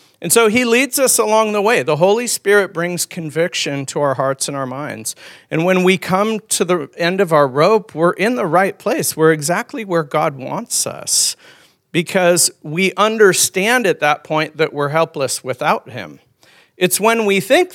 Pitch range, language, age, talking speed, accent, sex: 155-205 Hz, English, 50-69, 185 wpm, American, male